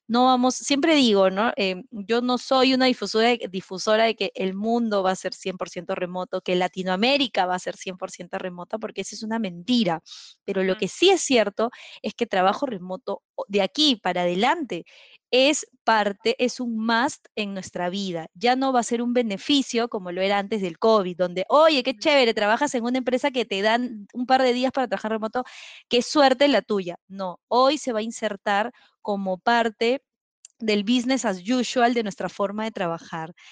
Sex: female